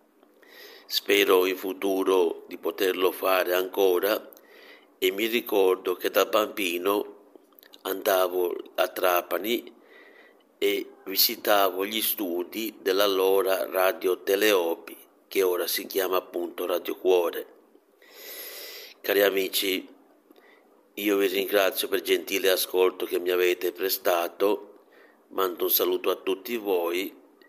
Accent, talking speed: native, 105 wpm